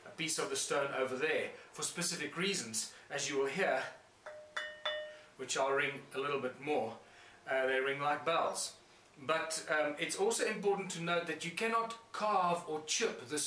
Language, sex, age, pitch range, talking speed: English, male, 40-59, 150-195 Hz, 175 wpm